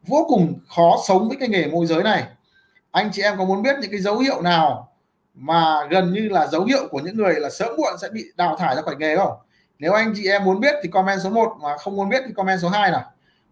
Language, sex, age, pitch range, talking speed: Vietnamese, male, 20-39, 175-220 Hz, 265 wpm